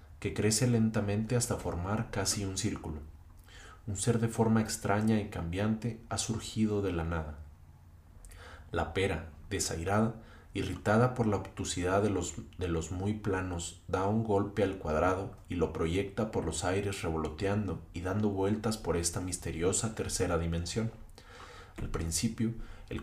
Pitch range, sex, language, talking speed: 85-105 Hz, male, Spanish, 145 wpm